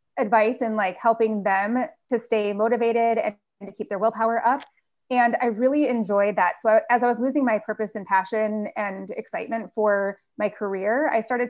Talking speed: 190 wpm